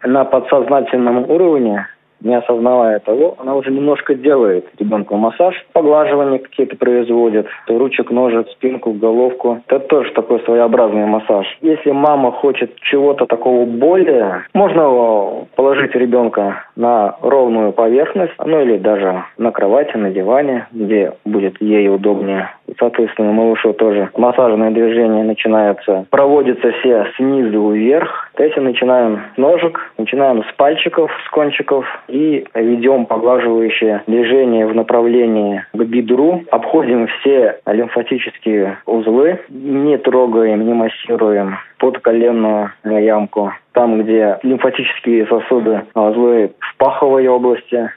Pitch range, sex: 105-130 Hz, male